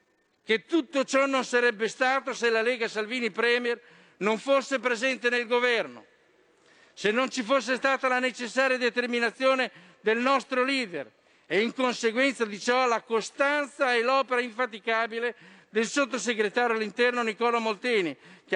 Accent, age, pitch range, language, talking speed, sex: native, 50-69, 210-255 Hz, Italian, 140 wpm, male